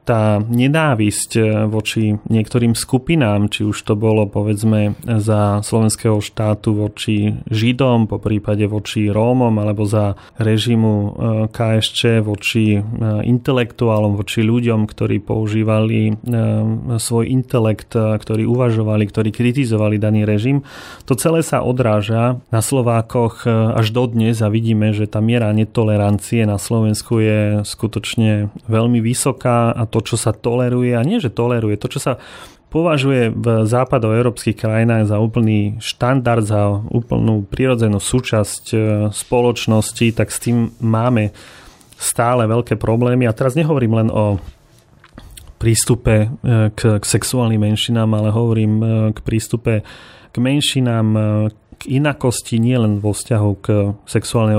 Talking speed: 125 wpm